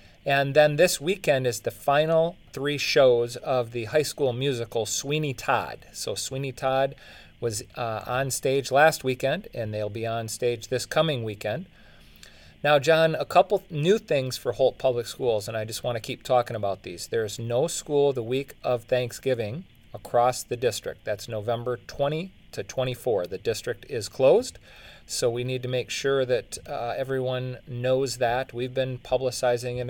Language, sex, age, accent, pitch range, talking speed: English, male, 40-59, American, 115-140 Hz, 175 wpm